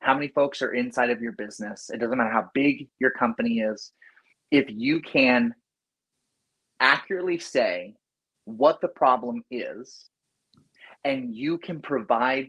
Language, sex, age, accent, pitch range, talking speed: English, male, 30-49, American, 125-180 Hz, 140 wpm